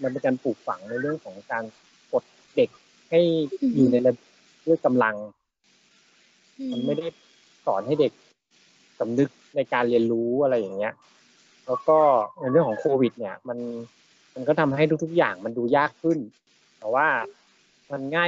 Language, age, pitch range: Thai, 20-39, 120-155 Hz